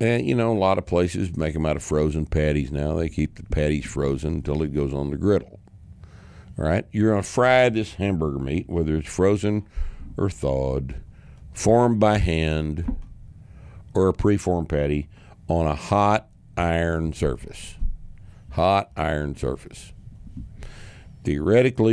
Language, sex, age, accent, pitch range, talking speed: English, male, 60-79, American, 80-105 Hz, 150 wpm